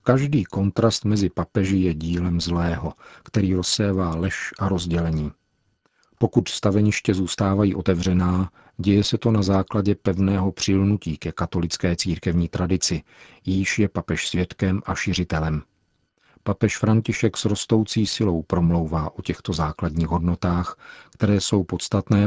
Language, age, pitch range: Czech, 50-69, 85-100 Hz